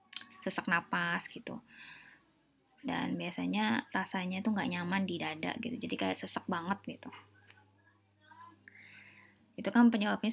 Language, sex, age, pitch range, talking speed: Hindi, female, 20-39, 170-215 Hz, 115 wpm